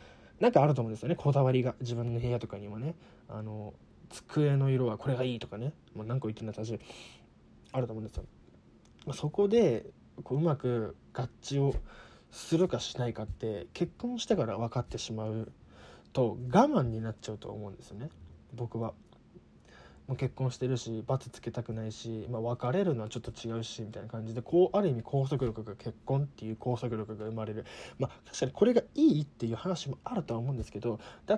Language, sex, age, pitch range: Japanese, male, 20-39, 110-140 Hz